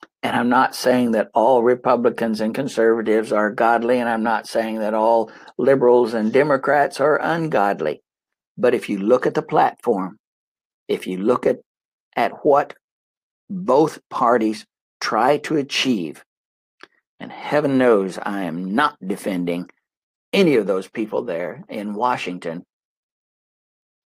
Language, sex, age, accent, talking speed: English, male, 60-79, American, 135 wpm